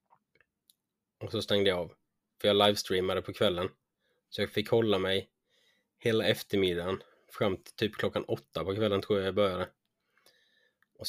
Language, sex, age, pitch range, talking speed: Swedish, male, 20-39, 100-110 Hz, 155 wpm